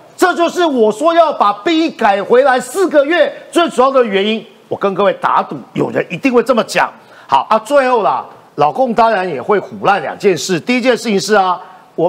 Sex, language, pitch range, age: male, Chinese, 215-260 Hz, 50-69